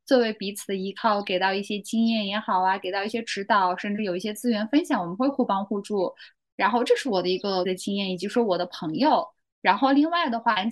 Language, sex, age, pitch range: Chinese, female, 10-29, 195-240 Hz